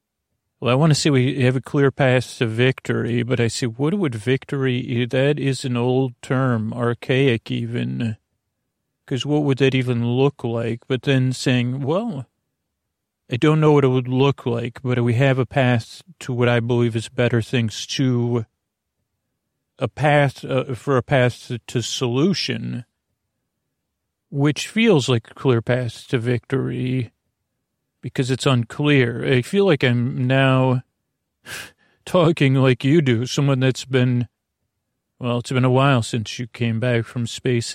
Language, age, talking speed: English, 40-59, 155 wpm